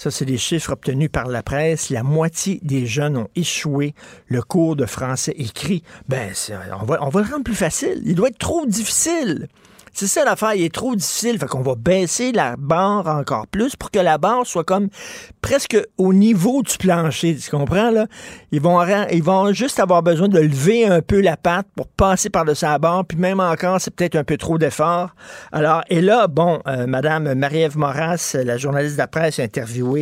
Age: 50-69